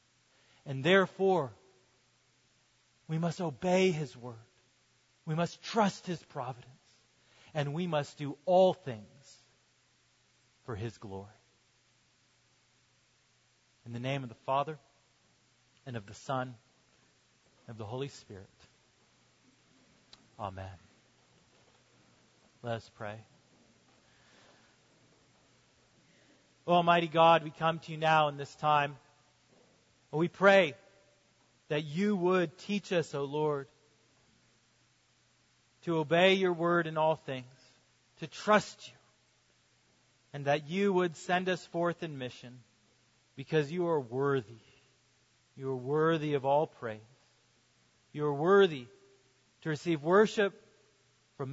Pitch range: 125-170 Hz